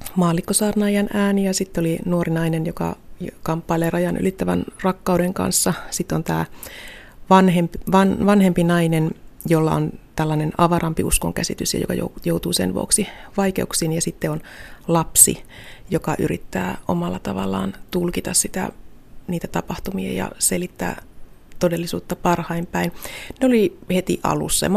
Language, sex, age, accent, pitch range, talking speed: Finnish, female, 30-49, native, 150-185 Hz, 125 wpm